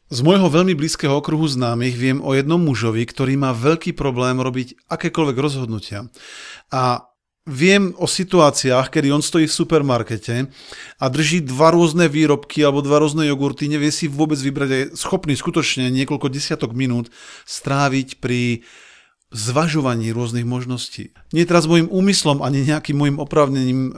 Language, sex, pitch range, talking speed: Slovak, male, 125-155 Hz, 150 wpm